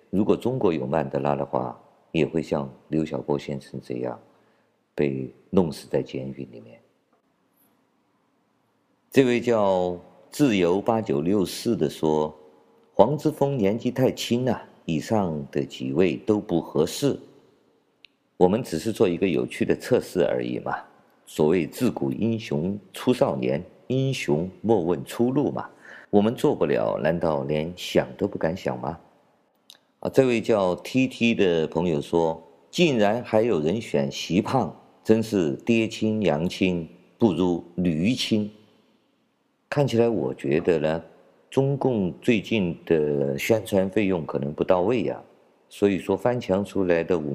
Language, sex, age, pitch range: Chinese, male, 50-69, 75-115 Hz